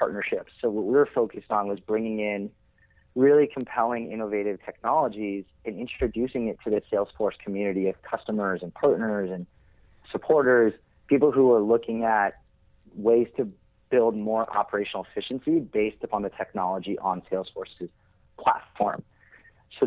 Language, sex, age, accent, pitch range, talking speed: English, male, 30-49, American, 105-130 Hz, 140 wpm